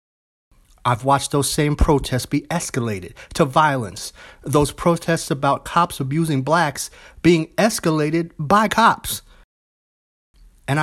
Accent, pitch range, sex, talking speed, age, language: American, 120-165 Hz, male, 110 wpm, 30-49, English